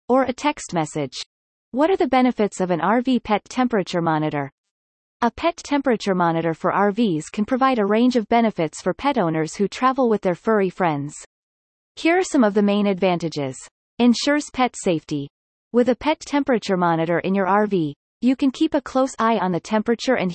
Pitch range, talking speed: 180-255 Hz, 185 wpm